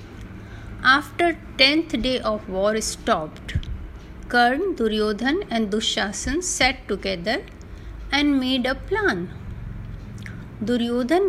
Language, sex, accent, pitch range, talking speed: Hindi, female, native, 190-285 Hz, 95 wpm